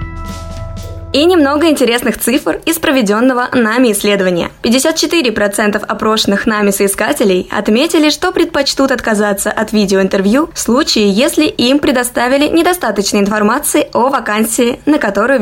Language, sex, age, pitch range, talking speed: Russian, female, 20-39, 210-280 Hz, 115 wpm